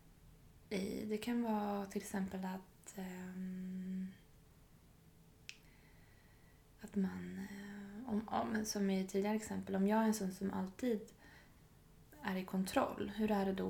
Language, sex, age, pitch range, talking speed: Swedish, female, 20-39, 190-220 Hz, 130 wpm